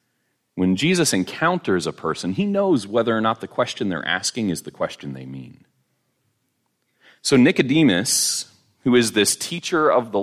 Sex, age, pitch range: male, 30-49, 95-155 Hz